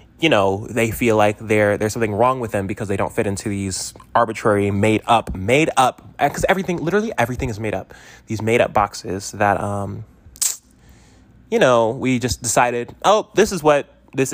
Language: English